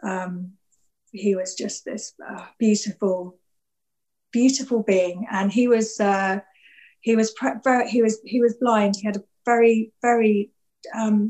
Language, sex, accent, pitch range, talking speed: English, female, British, 195-225 Hz, 150 wpm